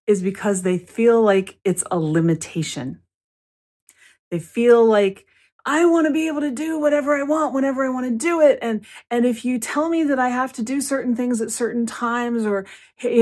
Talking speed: 205 wpm